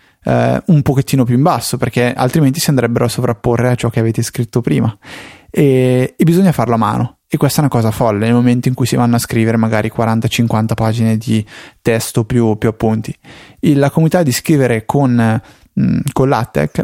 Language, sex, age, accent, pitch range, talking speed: Italian, male, 20-39, native, 115-150 Hz, 195 wpm